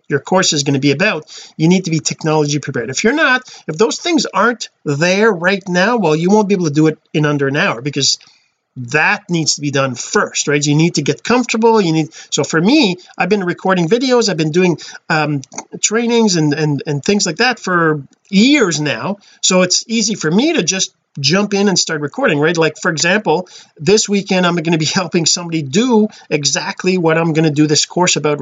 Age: 40-59